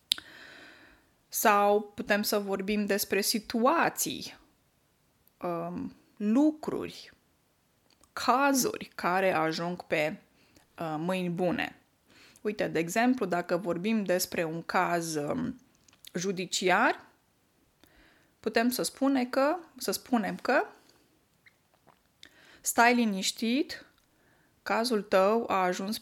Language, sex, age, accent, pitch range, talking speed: Romanian, female, 20-39, native, 180-235 Hz, 75 wpm